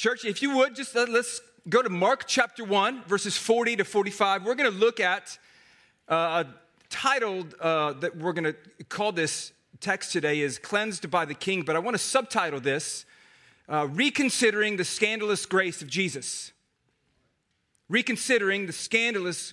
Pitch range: 170-220 Hz